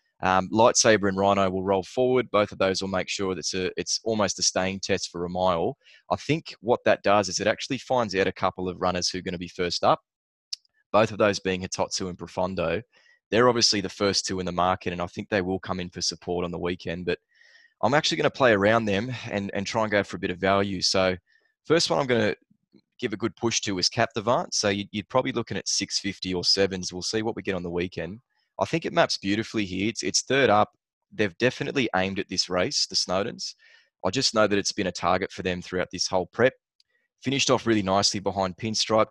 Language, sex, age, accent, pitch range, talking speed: English, male, 20-39, Australian, 95-115 Hz, 240 wpm